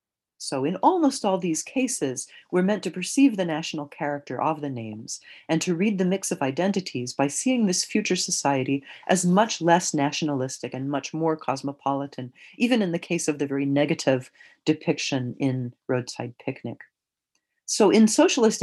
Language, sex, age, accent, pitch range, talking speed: English, female, 40-59, American, 135-185 Hz, 165 wpm